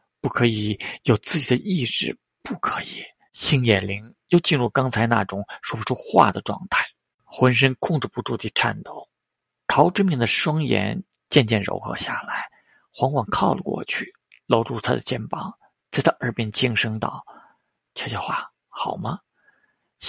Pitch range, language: 115-165 Hz, Chinese